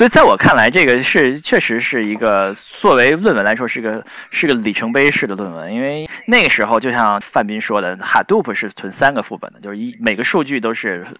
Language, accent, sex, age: Chinese, native, male, 20-39